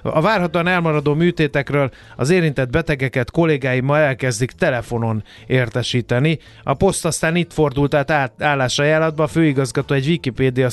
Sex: male